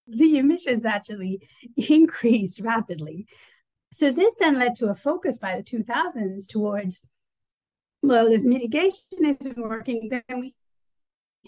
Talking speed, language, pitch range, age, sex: 120 wpm, English, 185-250 Hz, 30-49, female